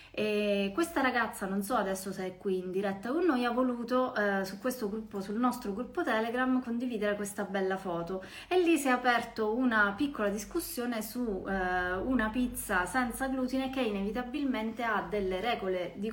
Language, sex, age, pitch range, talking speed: Italian, female, 20-39, 185-225 Hz, 175 wpm